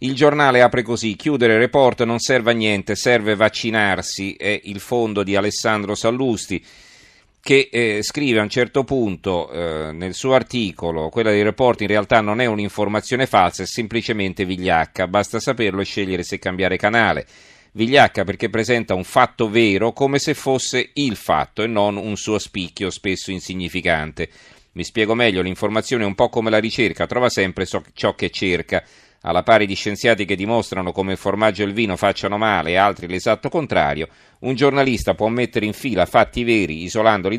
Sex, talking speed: male, 175 wpm